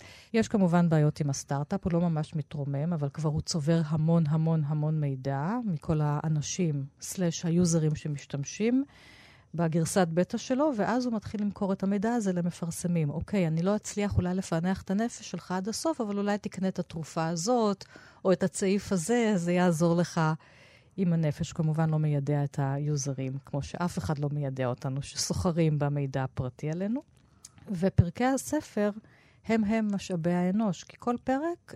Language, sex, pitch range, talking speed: Hebrew, female, 150-190 Hz, 155 wpm